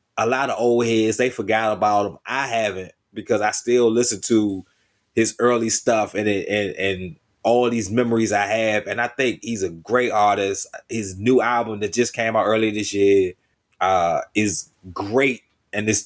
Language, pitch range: English, 105-125 Hz